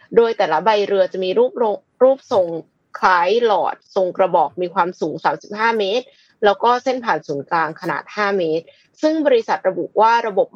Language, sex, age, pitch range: Thai, female, 20-39, 185-265 Hz